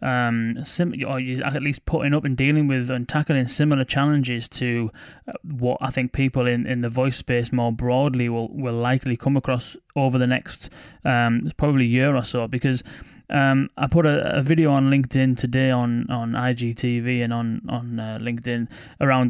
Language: English